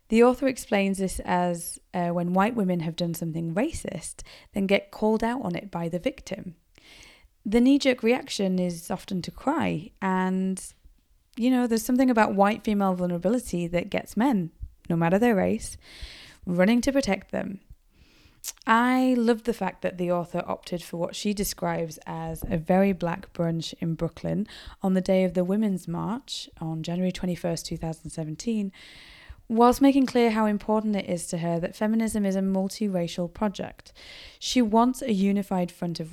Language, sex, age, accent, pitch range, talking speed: English, female, 20-39, British, 170-215 Hz, 165 wpm